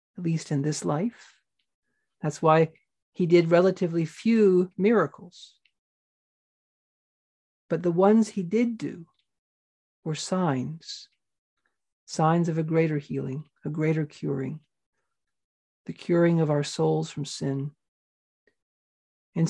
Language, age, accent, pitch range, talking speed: English, 50-69, American, 155-195 Hz, 110 wpm